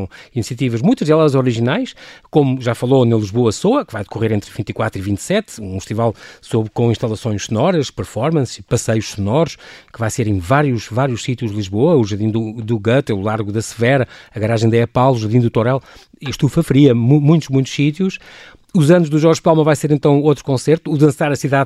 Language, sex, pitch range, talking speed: Portuguese, male, 115-160 Hz, 190 wpm